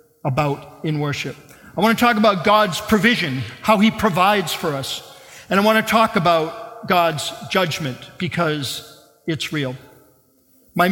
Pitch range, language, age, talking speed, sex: 165-220 Hz, English, 50-69, 150 wpm, male